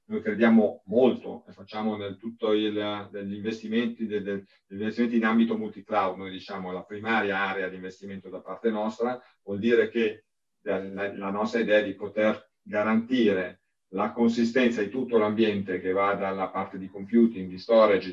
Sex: male